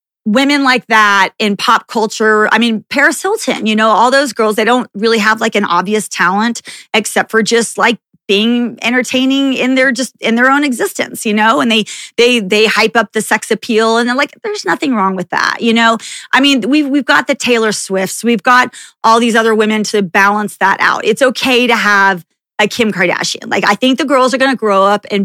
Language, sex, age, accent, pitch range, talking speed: English, female, 30-49, American, 205-250 Hz, 220 wpm